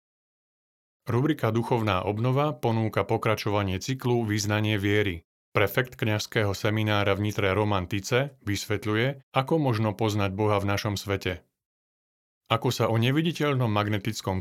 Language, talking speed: Slovak, 110 wpm